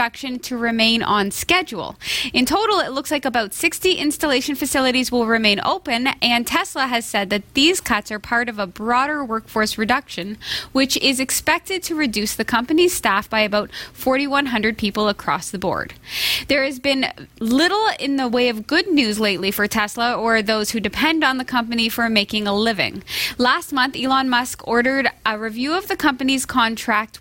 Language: English